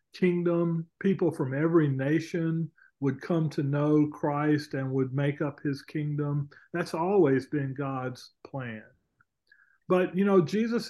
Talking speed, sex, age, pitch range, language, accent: 140 wpm, male, 40-59, 145-175 Hz, English, American